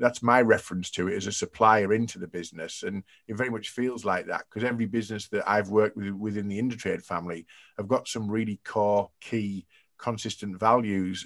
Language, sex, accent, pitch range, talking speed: English, male, British, 100-120 Hz, 195 wpm